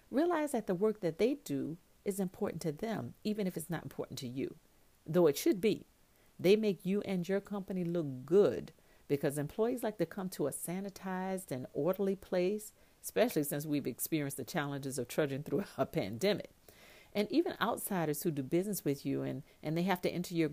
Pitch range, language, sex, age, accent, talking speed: 145-195 Hz, English, female, 50-69, American, 195 wpm